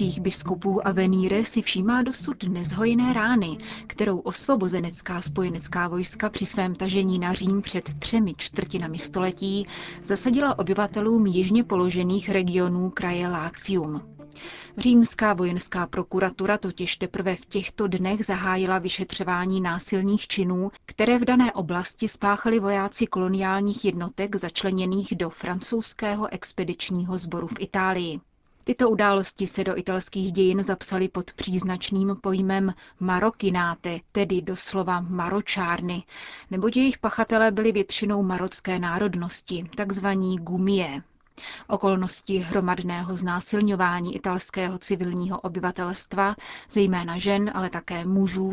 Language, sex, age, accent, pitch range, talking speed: Czech, female, 30-49, native, 180-205 Hz, 110 wpm